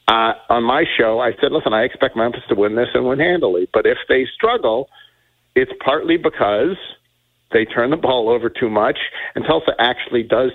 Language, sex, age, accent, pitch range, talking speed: English, male, 50-69, American, 125-185 Hz, 195 wpm